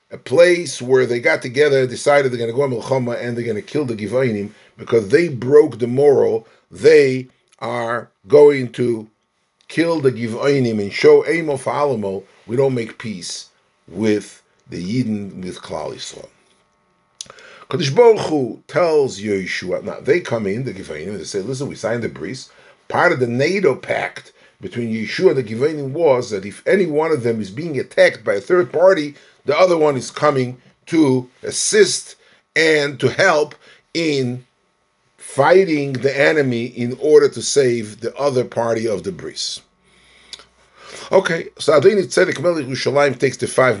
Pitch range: 120-155 Hz